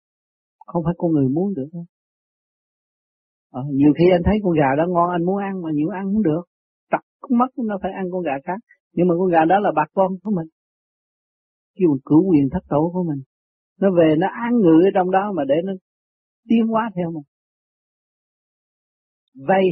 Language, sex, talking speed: Vietnamese, male, 200 wpm